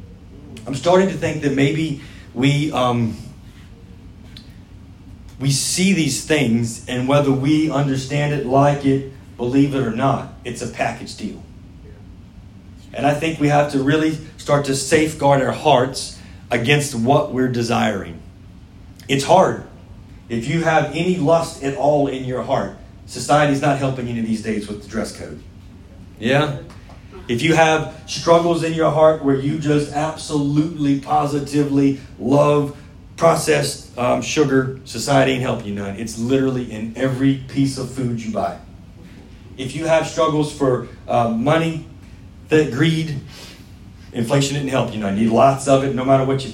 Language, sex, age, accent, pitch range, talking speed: English, male, 30-49, American, 100-145 Hz, 155 wpm